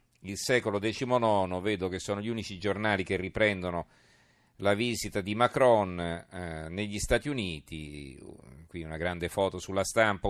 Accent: native